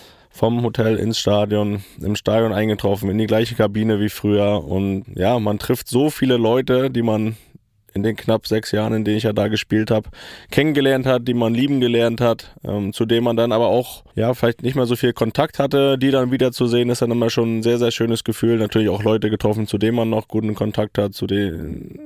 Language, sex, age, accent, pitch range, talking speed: German, male, 20-39, German, 105-120 Hz, 220 wpm